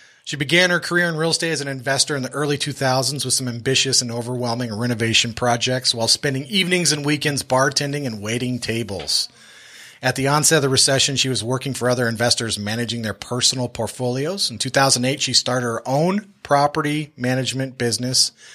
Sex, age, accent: male, 30-49, American